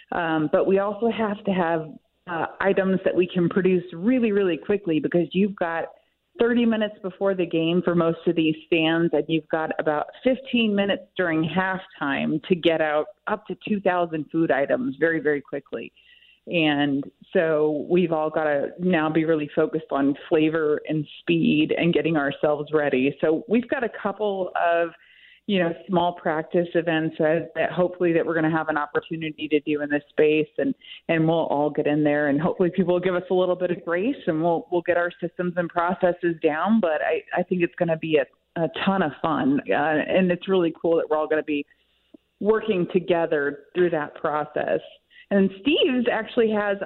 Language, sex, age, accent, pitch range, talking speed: English, female, 30-49, American, 160-195 Hz, 195 wpm